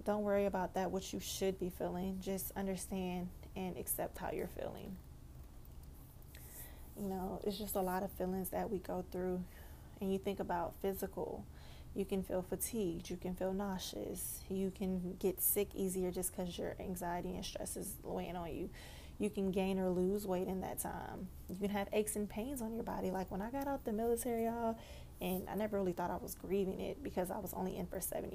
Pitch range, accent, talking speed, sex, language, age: 185-205 Hz, American, 205 wpm, female, English, 20-39